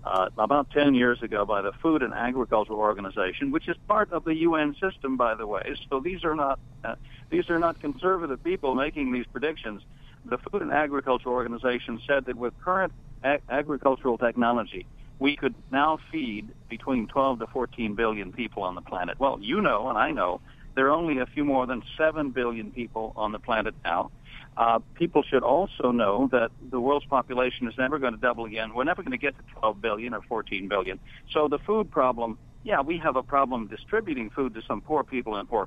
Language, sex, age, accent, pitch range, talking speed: English, male, 60-79, American, 120-145 Hz, 205 wpm